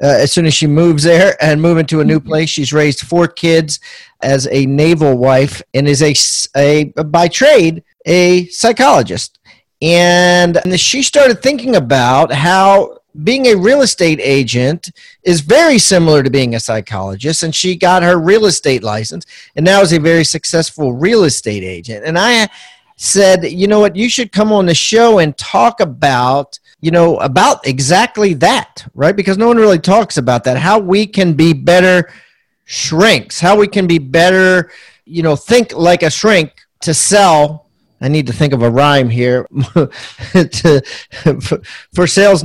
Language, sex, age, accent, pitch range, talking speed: English, male, 40-59, American, 145-190 Hz, 170 wpm